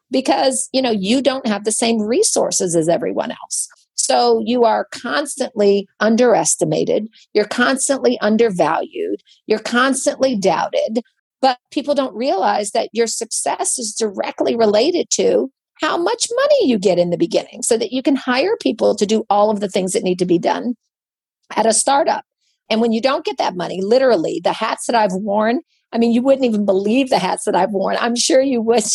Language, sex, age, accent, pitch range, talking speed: English, female, 50-69, American, 205-255 Hz, 185 wpm